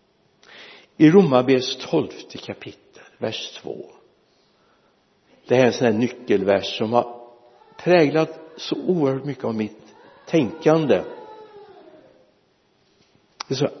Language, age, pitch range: Swedish, 60-79, 130-175 Hz